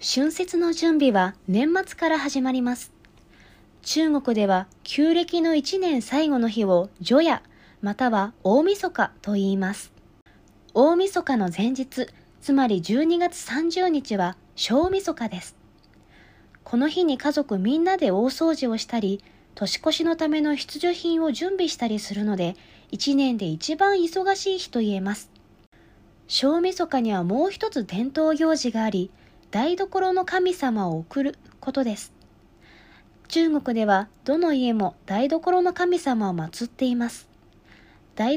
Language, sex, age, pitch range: Japanese, female, 20-39, 205-320 Hz